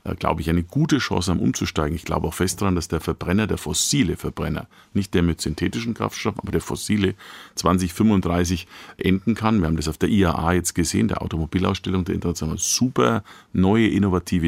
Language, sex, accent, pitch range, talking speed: German, male, German, 85-100 Hz, 180 wpm